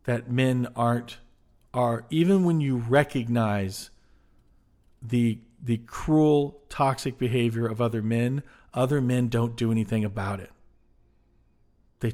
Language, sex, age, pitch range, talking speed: English, male, 50-69, 115-140 Hz, 120 wpm